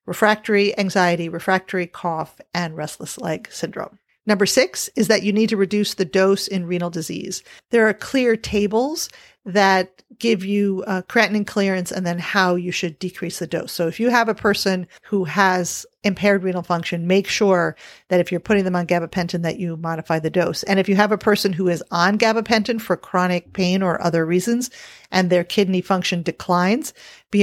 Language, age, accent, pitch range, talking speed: English, 40-59, American, 175-210 Hz, 190 wpm